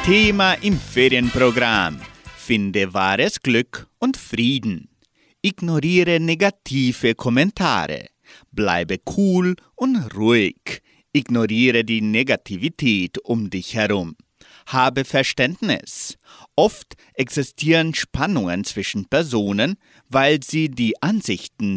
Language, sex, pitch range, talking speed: German, male, 110-165 Hz, 90 wpm